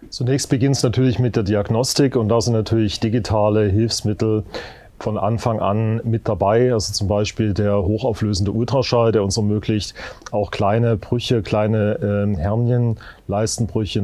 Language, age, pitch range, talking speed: German, 40-59, 105-115 Hz, 145 wpm